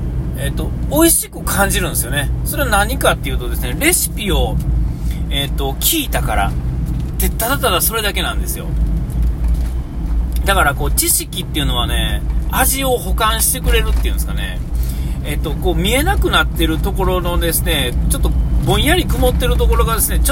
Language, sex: Japanese, male